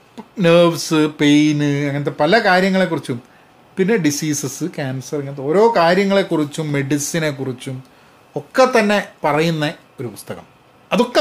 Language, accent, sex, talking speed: Malayalam, native, male, 95 wpm